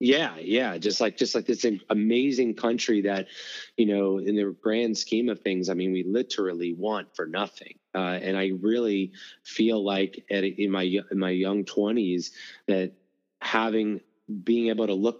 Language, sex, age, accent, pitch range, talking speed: English, male, 30-49, American, 95-110 Hz, 180 wpm